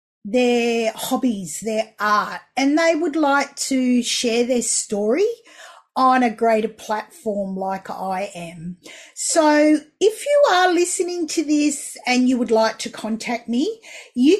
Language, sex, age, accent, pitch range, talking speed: English, female, 40-59, Australian, 220-295 Hz, 140 wpm